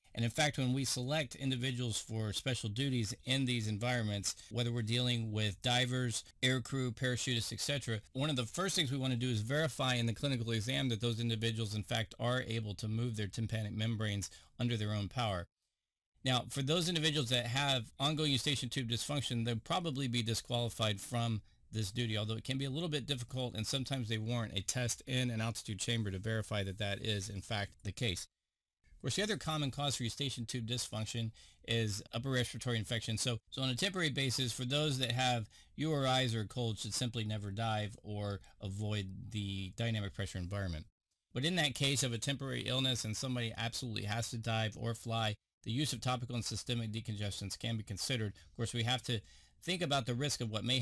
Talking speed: 205 wpm